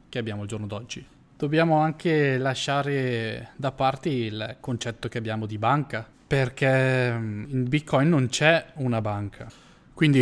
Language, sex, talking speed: Italian, male, 140 wpm